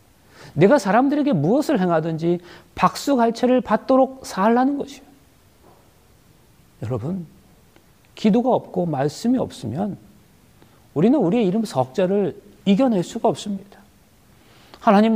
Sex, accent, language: male, native, Korean